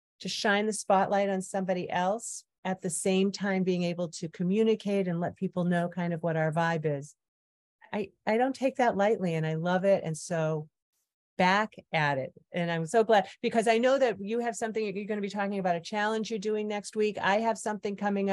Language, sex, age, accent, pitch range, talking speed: English, female, 40-59, American, 175-220 Hz, 215 wpm